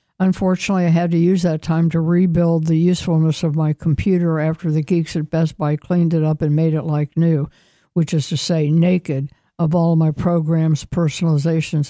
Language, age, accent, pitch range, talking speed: English, 60-79, American, 155-175 Hz, 190 wpm